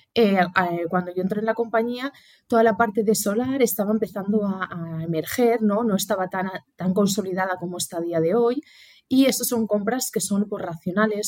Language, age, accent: Spanish, 20-39, Spanish